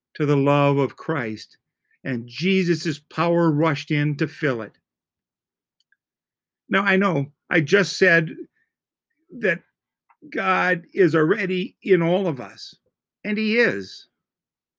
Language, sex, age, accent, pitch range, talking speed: English, male, 50-69, American, 135-180 Hz, 120 wpm